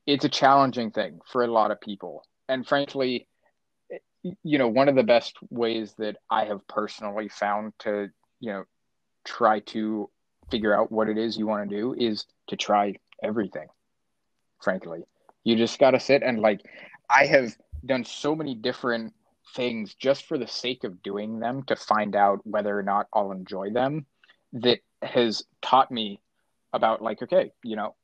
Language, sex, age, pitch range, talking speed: English, male, 20-39, 105-130 Hz, 175 wpm